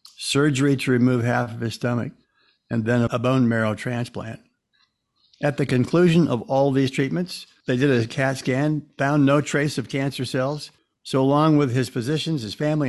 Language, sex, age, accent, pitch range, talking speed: English, male, 60-79, American, 110-135 Hz, 175 wpm